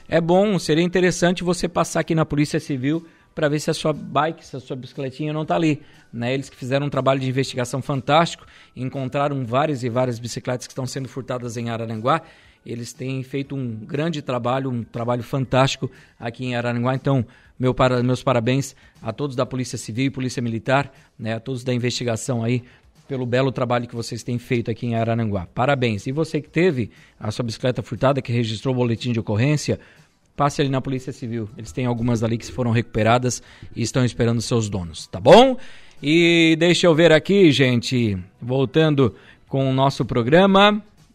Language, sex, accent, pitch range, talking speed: Portuguese, male, Brazilian, 120-155 Hz, 185 wpm